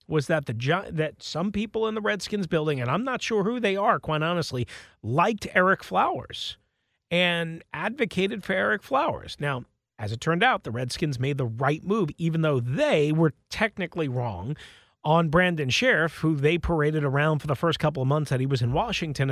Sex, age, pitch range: male, 40-59, 140-205 Hz